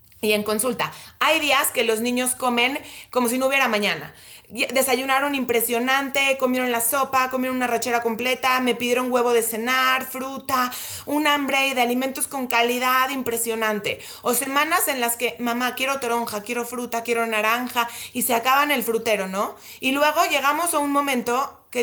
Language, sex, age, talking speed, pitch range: Spanish, female, 20-39, 170 wpm, 235-285 Hz